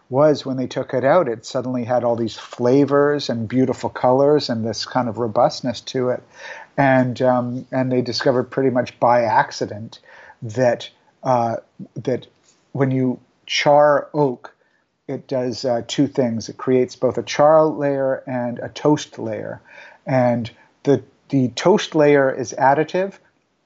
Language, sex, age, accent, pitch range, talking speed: English, male, 50-69, American, 125-145 Hz, 150 wpm